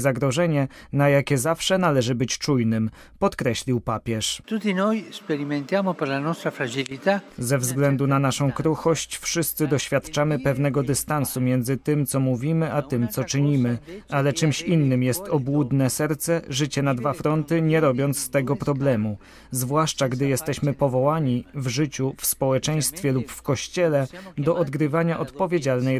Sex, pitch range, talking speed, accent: male, 130-155 Hz, 125 wpm, native